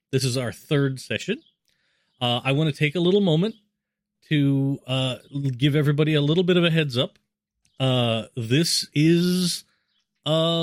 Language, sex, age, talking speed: English, male, 30-49, 160 wpm